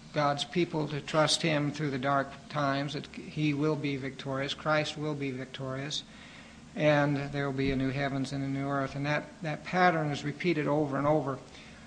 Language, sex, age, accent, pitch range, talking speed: English, male, 60-79, American, 140-160 Hz, 190 wpm